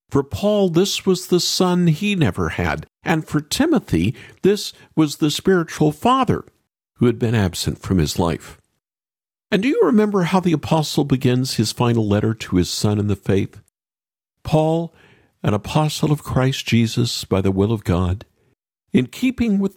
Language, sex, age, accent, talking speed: English, male, 50-69, American, 165 wpm